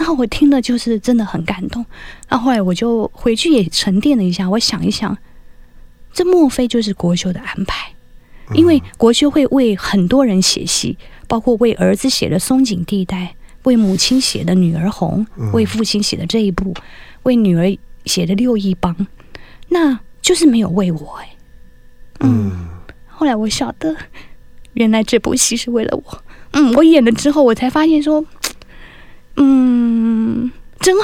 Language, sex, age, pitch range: Chinese, female, 20-39, 205-280 Hz